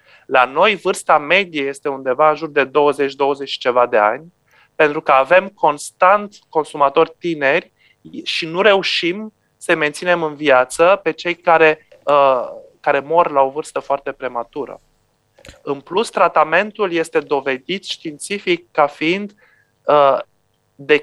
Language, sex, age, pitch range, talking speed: Romanian, male, 30-49, 140-180 Hz, 130 wpm